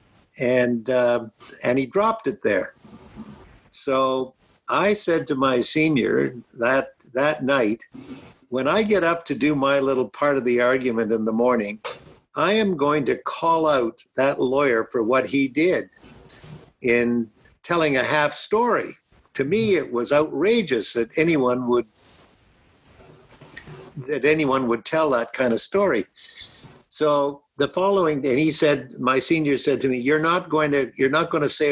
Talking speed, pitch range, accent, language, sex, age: 160 wpm, 125-155 Hz, American, English, male, 60-79